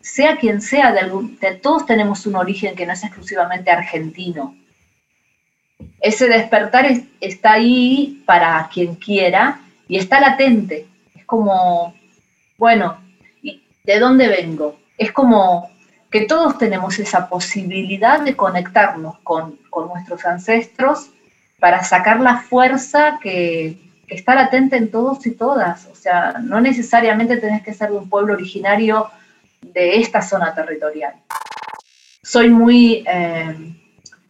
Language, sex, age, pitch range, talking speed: Spanish, female, 40-59, 180-240 Hz, 130 wpm